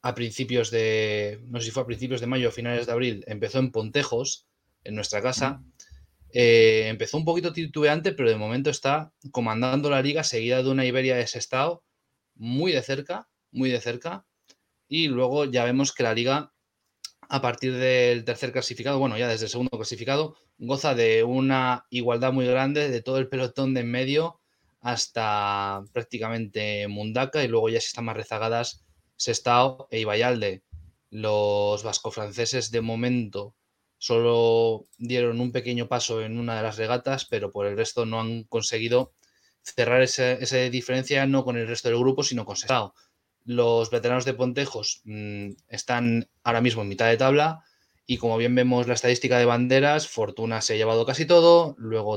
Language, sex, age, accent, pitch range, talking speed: Spanish, male, 20-39, Spanish, 110-130 Hz, 170 wpm